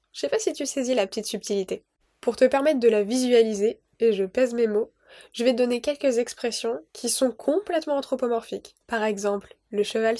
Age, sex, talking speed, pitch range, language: 10-29, female, 200 wpm, 220-255 Hz, French